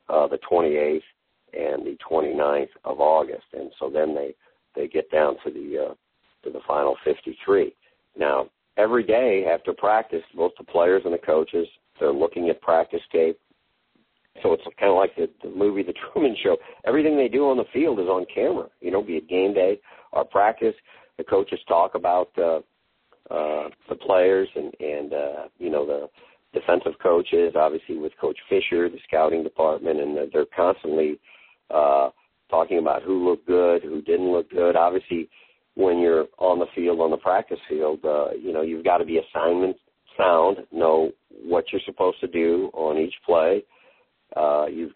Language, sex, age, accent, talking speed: English, male, 50-69, American, 175 wpm